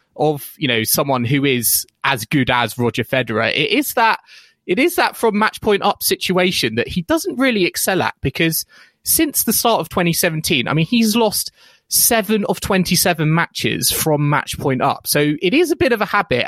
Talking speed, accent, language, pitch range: 195 wpm, British, English, 125-175 Hz